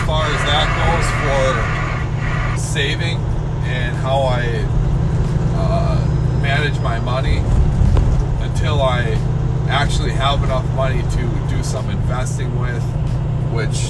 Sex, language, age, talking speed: male, English, 30-49, 110 wpm